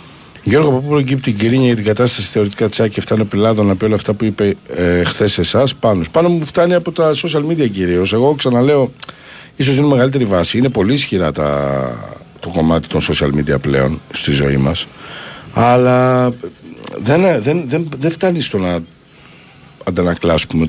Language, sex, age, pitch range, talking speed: Greek, male, 60-79, 90-140 Hz, 170 wpm